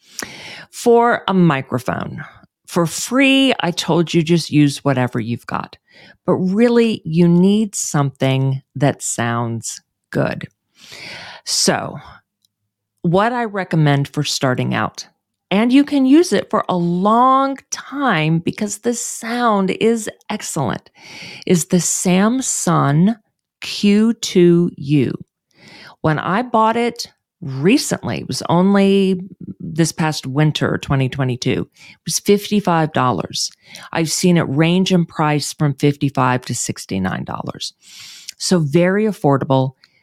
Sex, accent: female, American